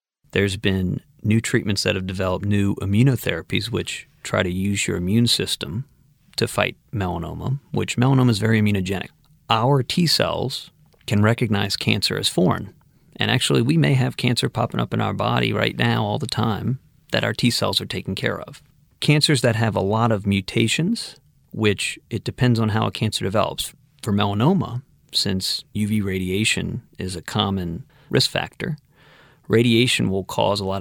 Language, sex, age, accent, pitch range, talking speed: English, male, 40-59, American, 100-125 Hz, 165 wpm